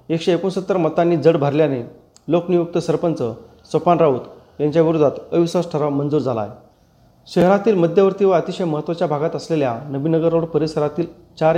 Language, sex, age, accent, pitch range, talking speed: Marathi, male, 40-59, native, 140-170 Hz, 130 wpm